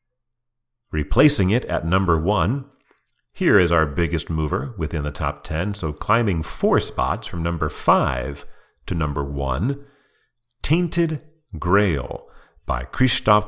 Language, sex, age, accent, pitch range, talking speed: English, male, 40-59, American, 80-120 Hz, 125 wpm